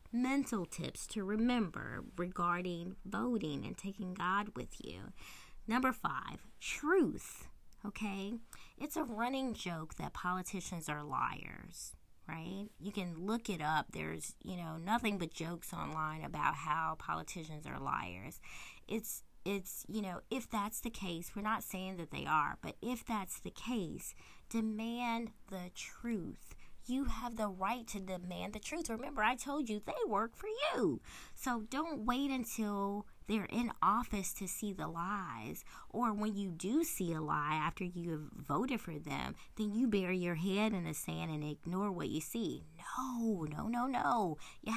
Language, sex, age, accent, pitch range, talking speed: English, female, 20-39, American, 175-235 Hz, 160 wpm